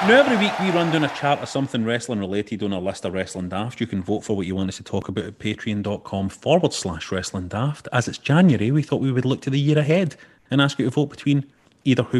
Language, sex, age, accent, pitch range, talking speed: English, male, 30-49, British, 100-140 Hz, 270 wpm